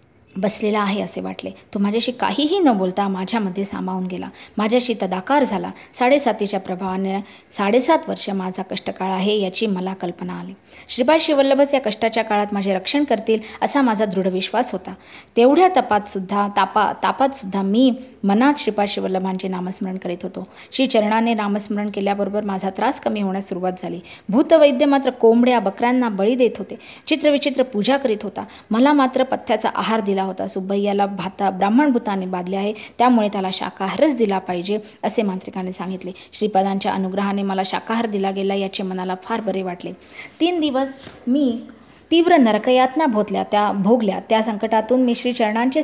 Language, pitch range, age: English, 195-255 Hz, 20-39